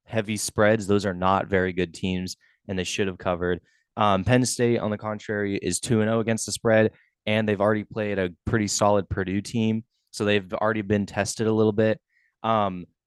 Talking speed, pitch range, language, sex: 195 wpm, 95-110 Hz, English, male